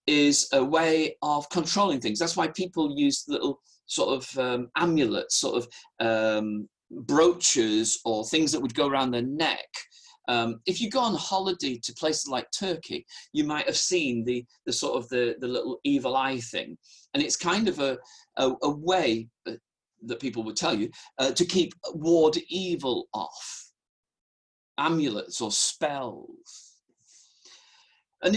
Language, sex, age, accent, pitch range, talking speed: English, male, 40-59, British, 125-195 Hz, 155 wpm